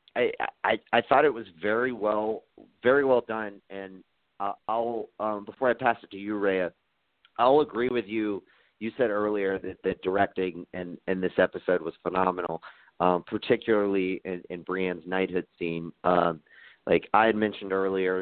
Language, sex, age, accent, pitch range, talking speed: English, male, 40-59, American, 90-105 Hz, 160 wpm